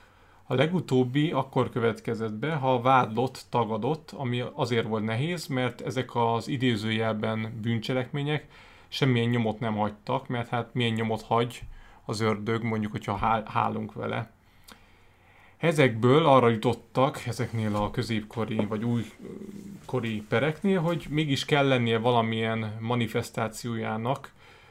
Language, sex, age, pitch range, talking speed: Hungarian, male, 30-49, 110-130 Hz, 115 wpm